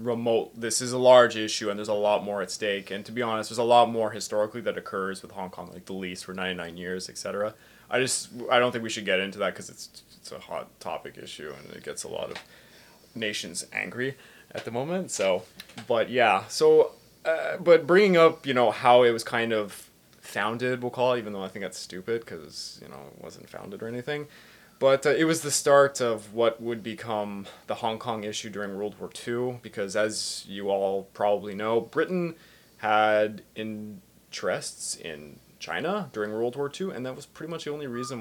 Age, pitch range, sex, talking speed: 20-39, 105-125 Hz, male, 215 wpm